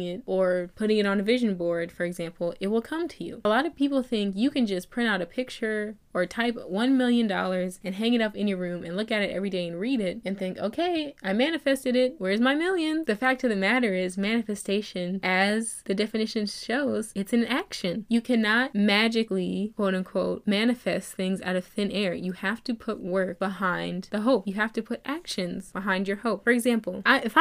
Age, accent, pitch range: 10-29, American, 190-245 Hz